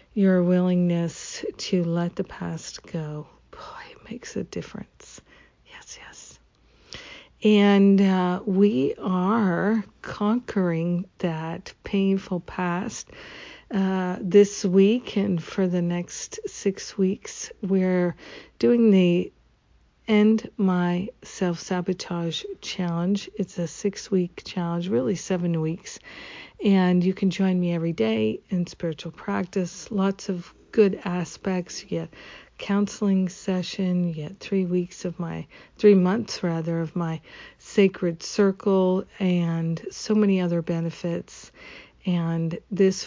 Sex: female